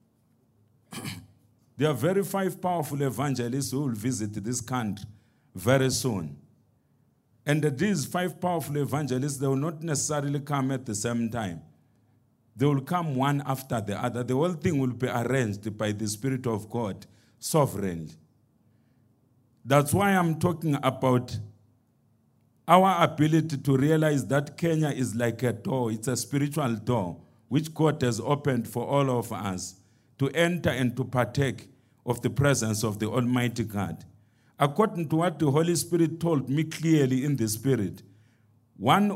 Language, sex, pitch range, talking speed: English, male, 115-145 Hz, 150 wpm